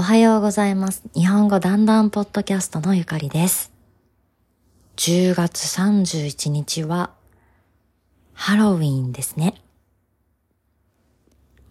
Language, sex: Japanese, female